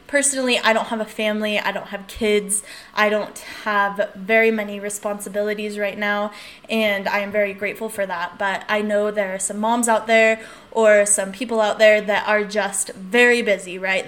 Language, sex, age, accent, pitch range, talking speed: English, female, 10-29, American, 200-230 Hz, 190 wpm